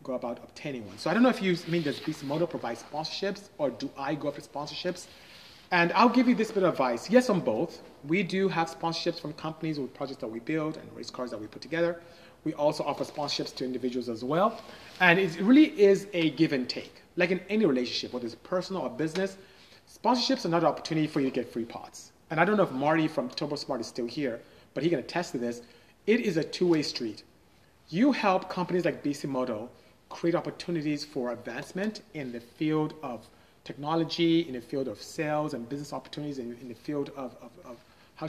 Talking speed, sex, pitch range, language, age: 215 wpm, male, 130-175 Hz, English, 30-49